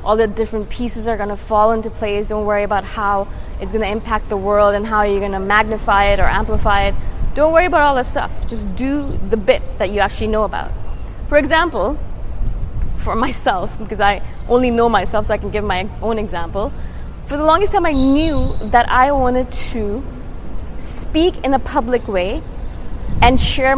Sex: female